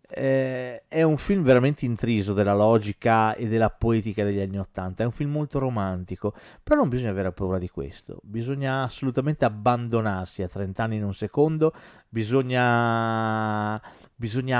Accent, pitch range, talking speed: native, 100-130 Hz, 150 wpm